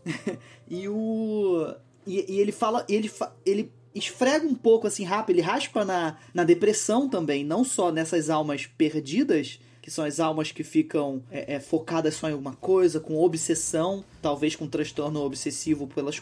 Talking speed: 170 wpm